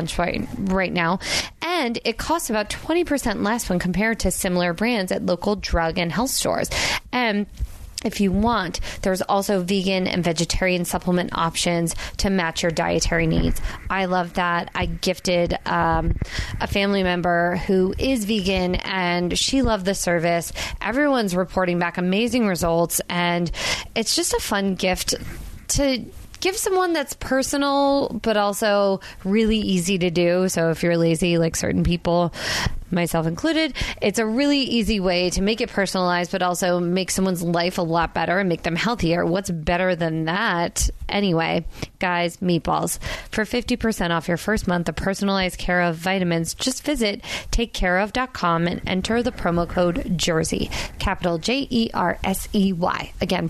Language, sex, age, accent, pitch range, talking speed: English, female, 20-39, American, 175-220 Hz, 150 wpm